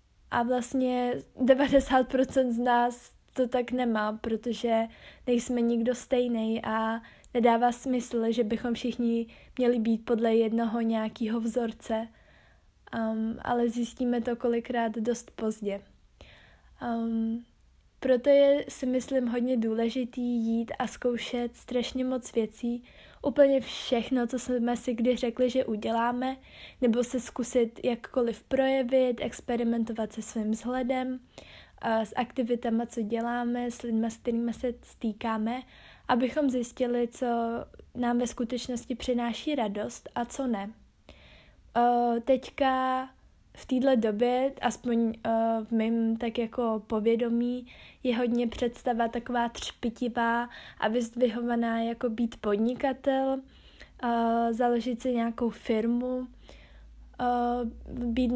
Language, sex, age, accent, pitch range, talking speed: Czech, female, 20-39, native, 230-250 Hz, 110 wpm